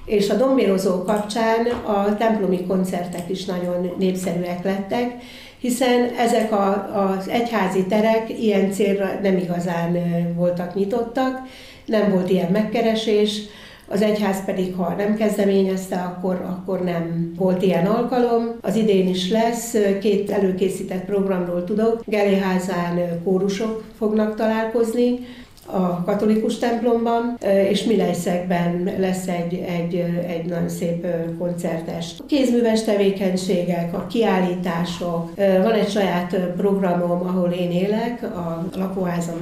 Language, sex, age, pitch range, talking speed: Hungarian, female, 60-79, 180-215 Hz, 115 wpm